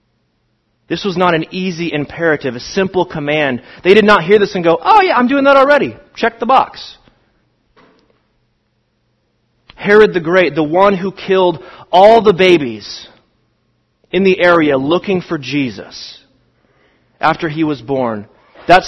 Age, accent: 30-49, American